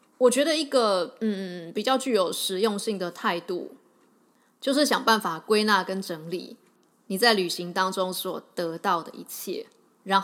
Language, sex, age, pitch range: Chinese, female, 20-39, 190-250 Hz